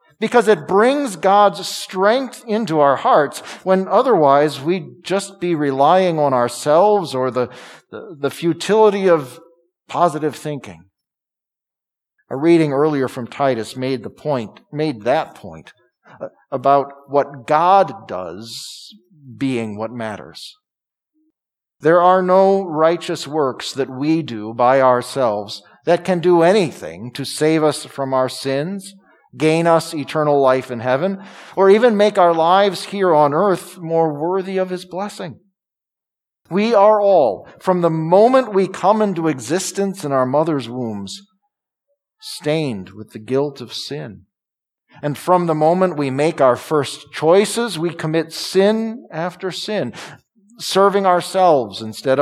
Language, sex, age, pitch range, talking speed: English, male, 50-69, 140-195 Hz, 135 wpm